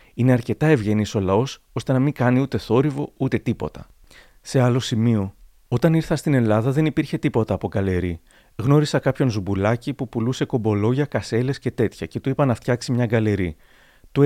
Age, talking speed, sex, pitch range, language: 30-49, 175 wpm, male, 100-140 Hz, Greek